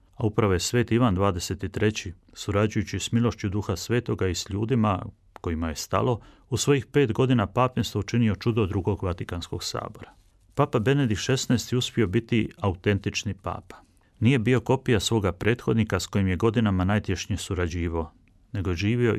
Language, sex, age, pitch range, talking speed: Croatian, male, 30-49, 95-115 Hz, 145 wpm